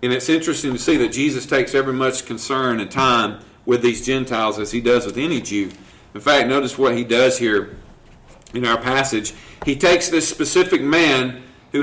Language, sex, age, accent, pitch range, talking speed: English, male, 40-59, American, 125-175 Hz, 195 wpm